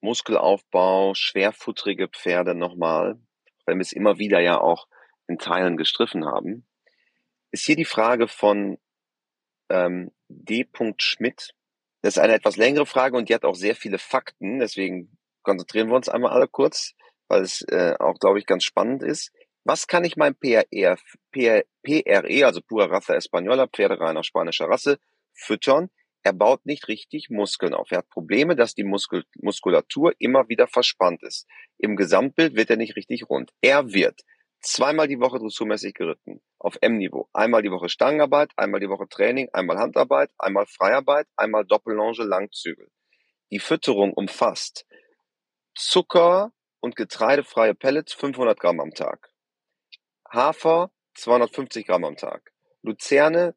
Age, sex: 30-49, male